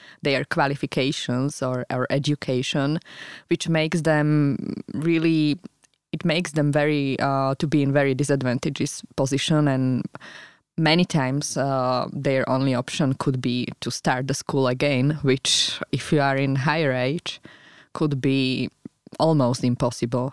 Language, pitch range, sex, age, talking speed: Slovak, 130-150 Hz, female, 20-39, 135 wpm